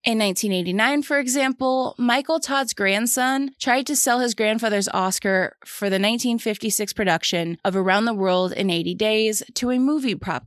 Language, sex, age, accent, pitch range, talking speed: English, female, 20-39, American, 185-230 Hz, 160 wpm